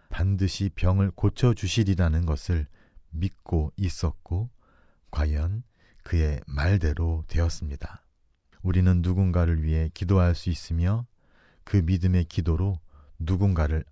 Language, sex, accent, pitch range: Korean, male, native, 80-95 Hz